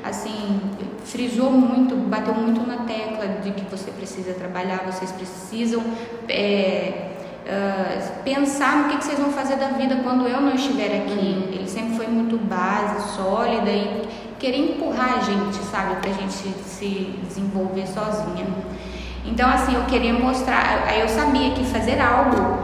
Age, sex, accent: 10-29, female, Brazilian